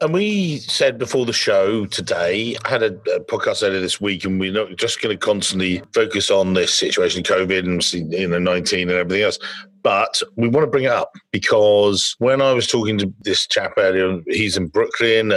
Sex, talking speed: male, 205 wpm